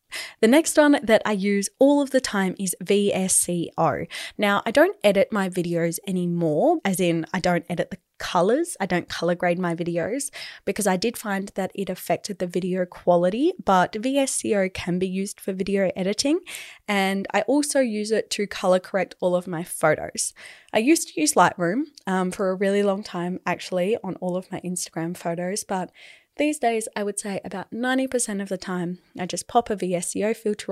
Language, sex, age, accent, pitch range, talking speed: English, female, 20-39, Australian, 180-225 Hz, 190 wpm